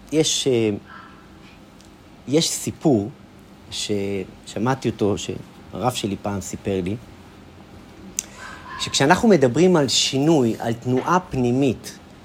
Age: 40-59